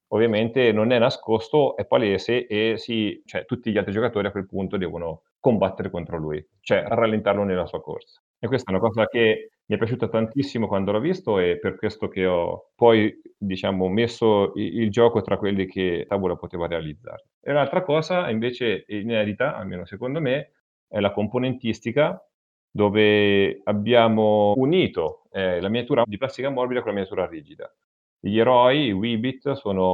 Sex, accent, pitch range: male, native, 100-125 Hz